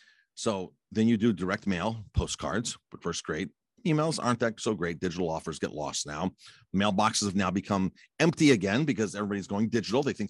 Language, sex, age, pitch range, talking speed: English, male, 50-69, 100-135 Hz, 185 wpm